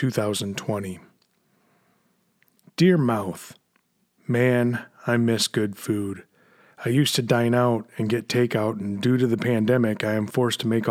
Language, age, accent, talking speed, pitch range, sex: English, 30-49, American, 145 wpm, 110-130 Hz, male